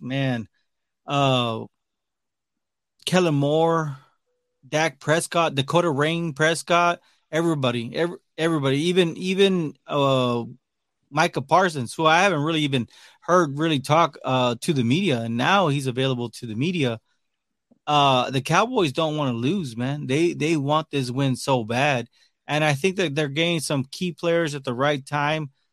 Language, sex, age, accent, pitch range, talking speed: English, male, 20-39, American, 130-160 Hz, 150 wpm